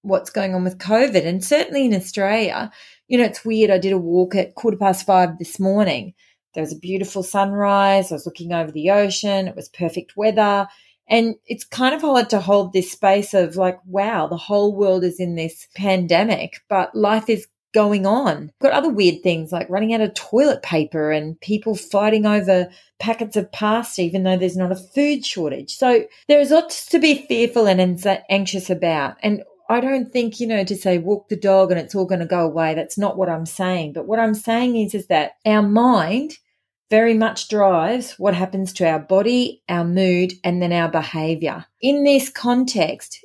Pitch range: 180-225 Hz